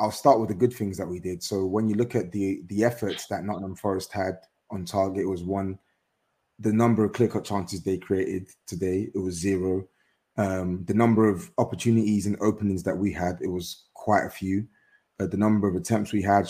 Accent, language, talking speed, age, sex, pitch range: British, English, 220 wpm, 20-39, male, 95-115 Hz